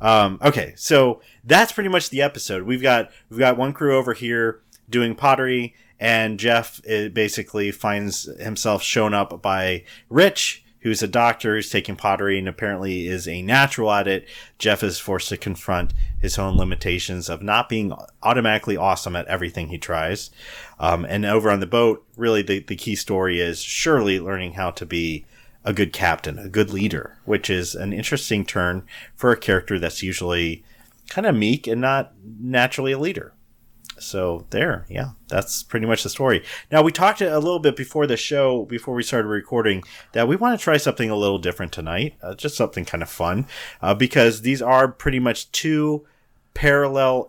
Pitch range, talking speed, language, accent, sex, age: 95-125 Hz, 180 wpm, English, American, male, 30-49